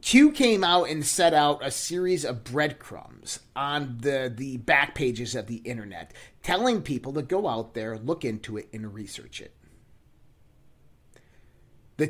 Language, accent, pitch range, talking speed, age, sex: English, American, 130-185 Hz, 155 wpm, 30-49, male